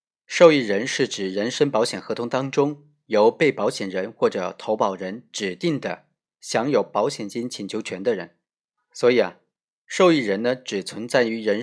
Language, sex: Chinese, male